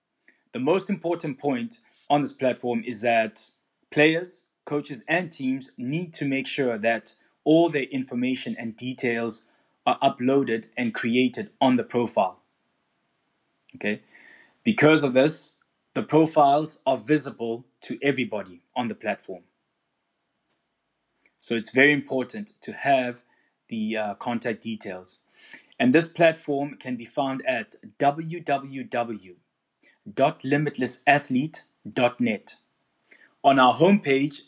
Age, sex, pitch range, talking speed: 20-39, male, 125-160 Hz, 115 wpm